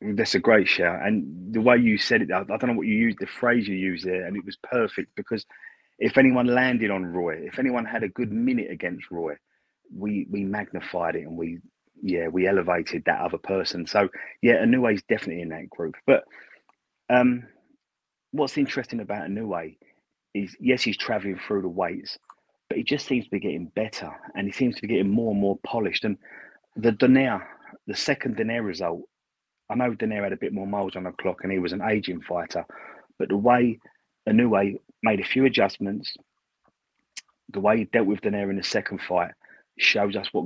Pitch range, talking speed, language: 95-125 Hz, 200 wpm, English